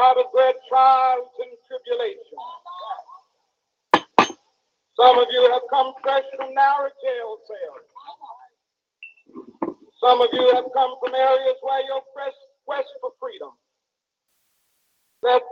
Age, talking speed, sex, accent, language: 50-69, 115 wpm, male, American, English